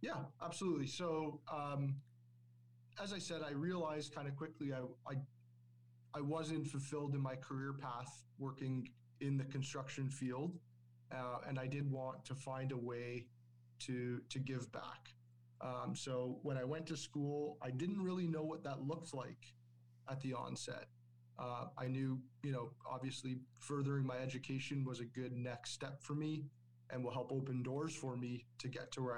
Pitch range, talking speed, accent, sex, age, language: 120-140 Hz, 175 wpm, American, male, 30-49, English